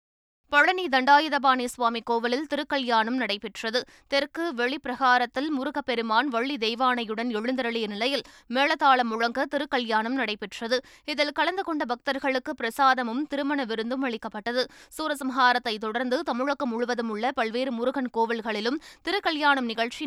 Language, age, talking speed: Tamil, 20-39, 105 wpm